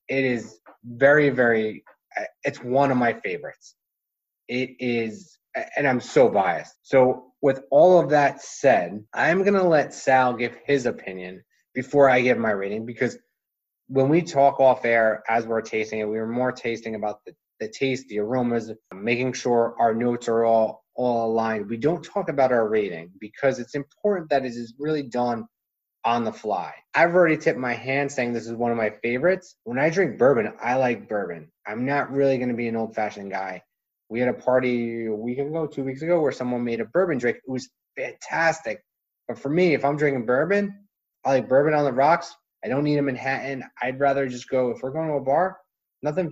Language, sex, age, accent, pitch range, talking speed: English, male, 30-49, American, 115-140 Hz, 200 wpm